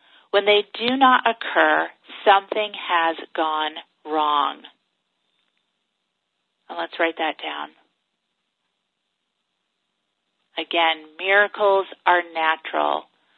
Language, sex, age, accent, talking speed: English, female, 30-49, American, 80 wpm